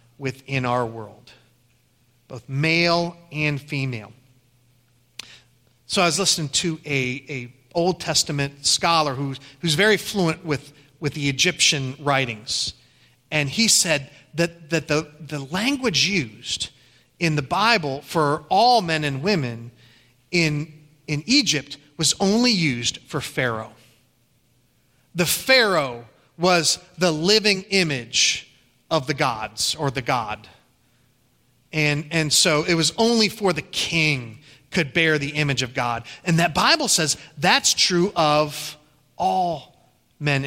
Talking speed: 130 wpm